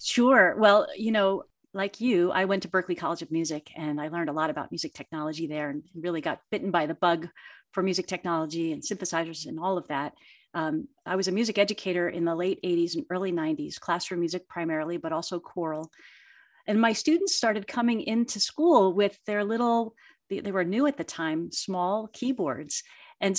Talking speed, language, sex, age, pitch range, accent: 190 wpm, English, female, 40-59, 175-220 Hz, American